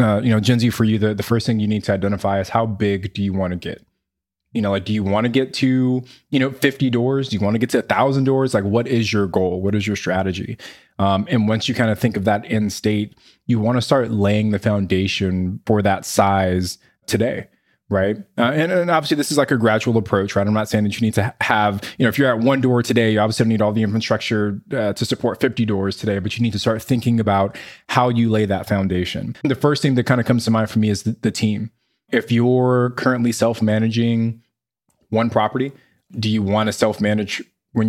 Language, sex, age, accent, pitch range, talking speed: English, male, 20-39, American, 105-120 Hz, 245 wpm